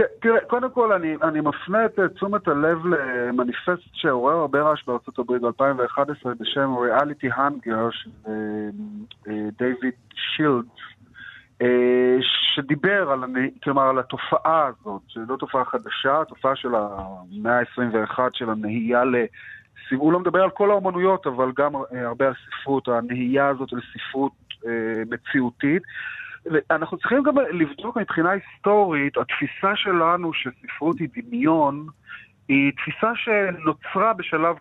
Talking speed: 120 wpm